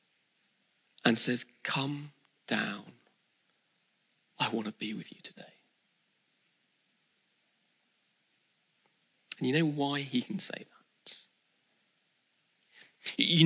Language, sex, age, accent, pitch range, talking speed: English, male, 40-59, British, 135-195 Hz, 90 wpm